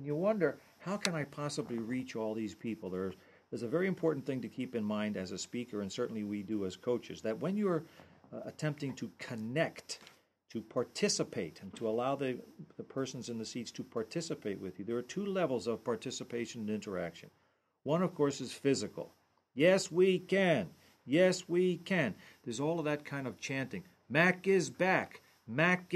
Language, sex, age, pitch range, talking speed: English, male, 50-69, 110-165 Hz, 190 wpm